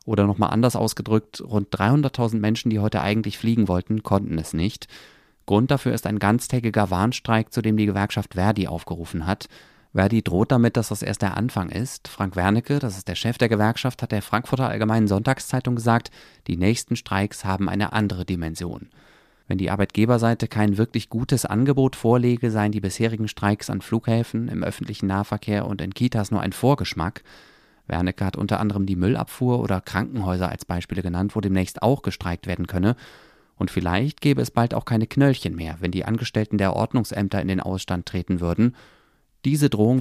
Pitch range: 95-120 Hz